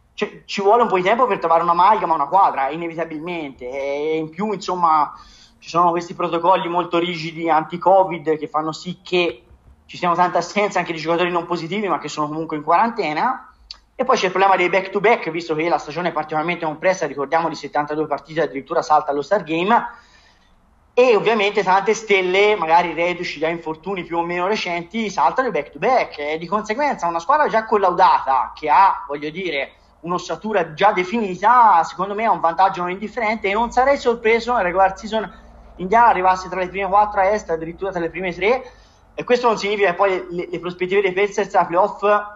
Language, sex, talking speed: Italian, male, 190 wpm